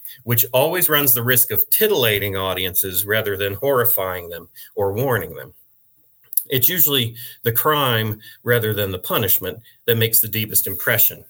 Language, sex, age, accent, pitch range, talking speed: English, male, 40-59, American, 105-130 Hz, 150 wpm